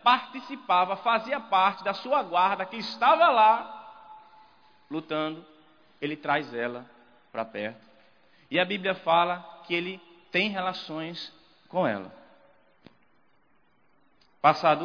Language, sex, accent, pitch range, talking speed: Portuguese, male, Brazilian, 145-230 Hz, 105 wpm